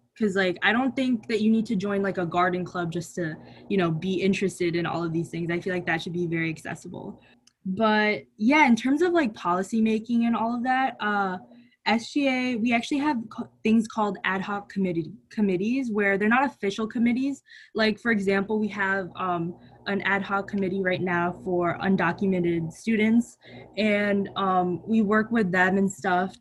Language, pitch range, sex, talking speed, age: English, 180-220 Hz, female, 195 wpm, 20-39